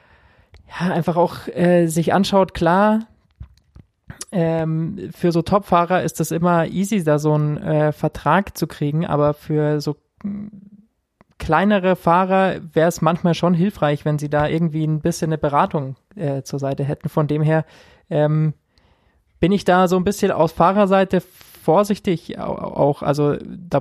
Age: 20-39